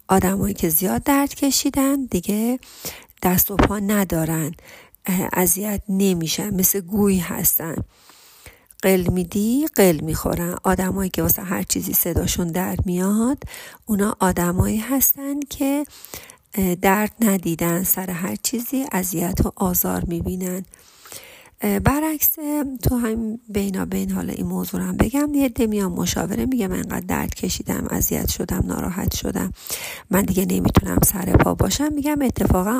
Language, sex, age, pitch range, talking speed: Persian, female, 40-59, 180-235 Hz, 130 wpm